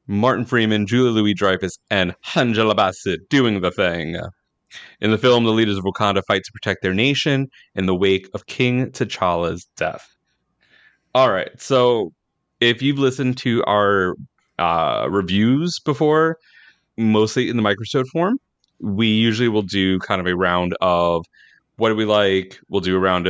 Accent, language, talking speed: American, English, 160 wpm